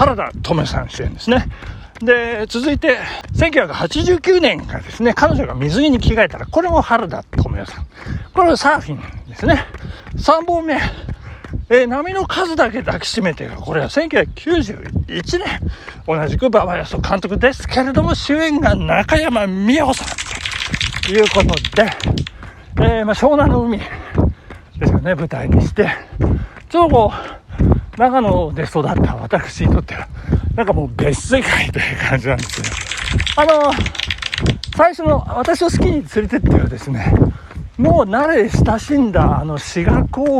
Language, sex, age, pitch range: Japanese, male, 60-79, 210-315 Hz